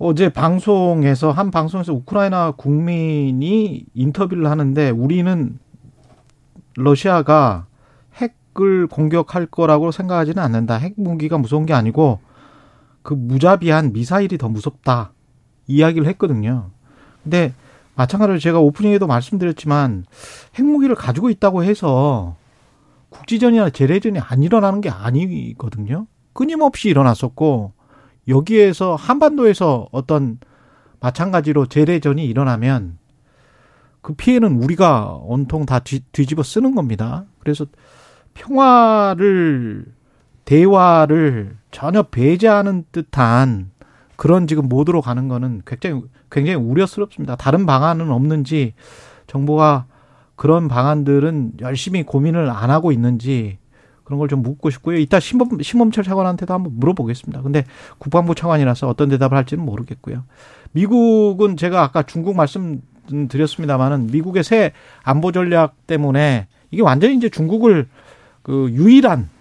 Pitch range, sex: 130-180 Hz, male